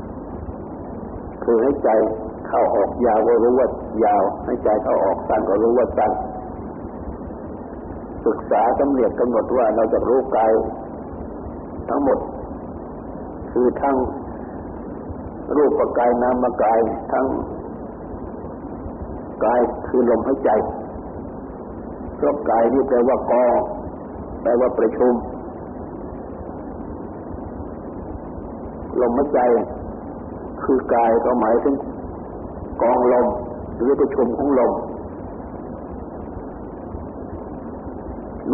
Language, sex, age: Thai, male, 50-69